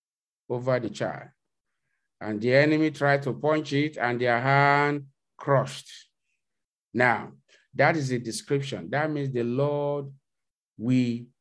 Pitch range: 120-150 Hz